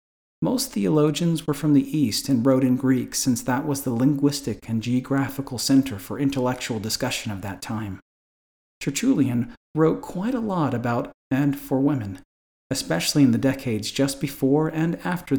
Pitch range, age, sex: 120-150 Hz, 40-59, male